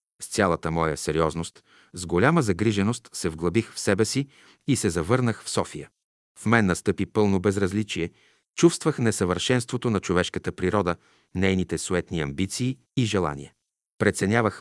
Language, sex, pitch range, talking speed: Bulgarian, male, 85-115 Hz, 135 wpm